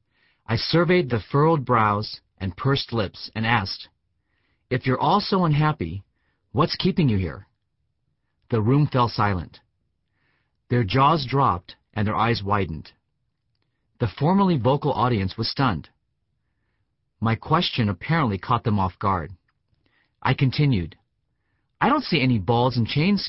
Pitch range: 105-135 Hz